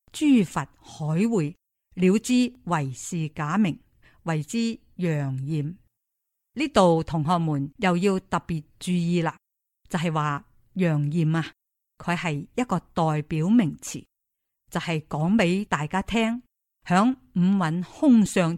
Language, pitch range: Chinese, 155-205 Hz